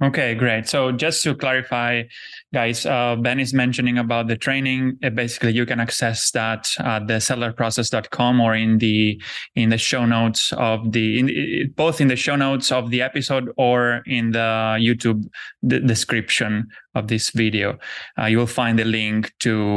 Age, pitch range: 20-39, 110-125 Hz